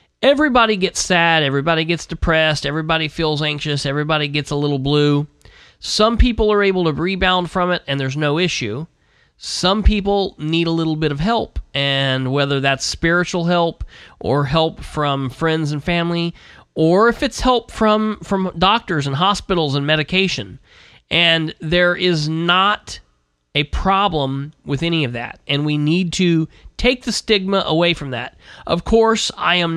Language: English